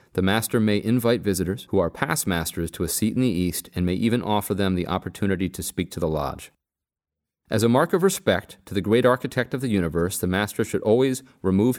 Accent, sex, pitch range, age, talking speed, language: American, male, 95-120 Hz, 30-49, 225 wpm, English